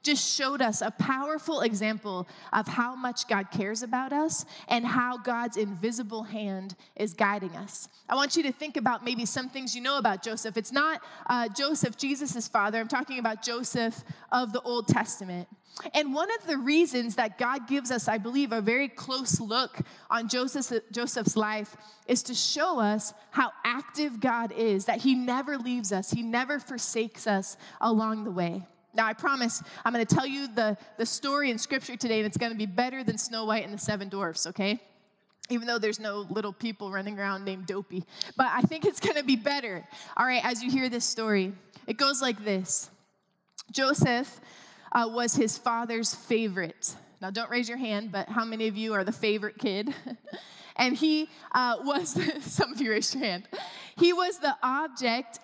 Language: English